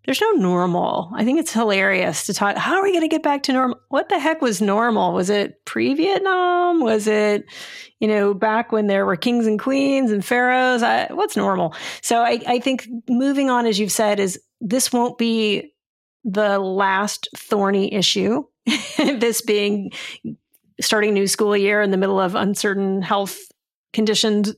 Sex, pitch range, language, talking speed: female, 200-245 Hz, English, 170 wpm